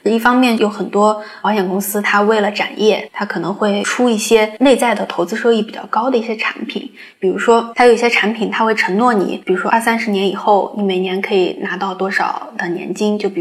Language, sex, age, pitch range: Chinese, female, 20-39, 195-240 Hz